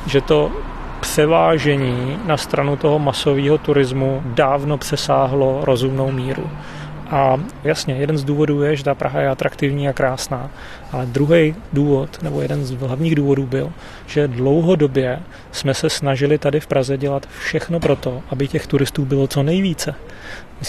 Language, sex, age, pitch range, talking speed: Czech, male, 30-49, 140-155 Hz, 150 wpm